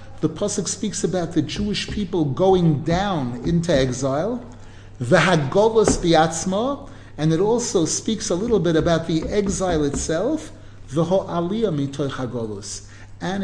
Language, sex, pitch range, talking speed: English, male, 130-200 Hz, 105 wpm